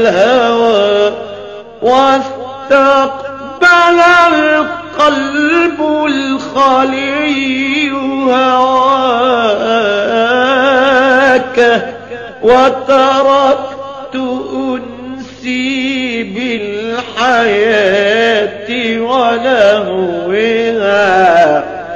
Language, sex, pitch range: Arabic, male, 230-270 Hz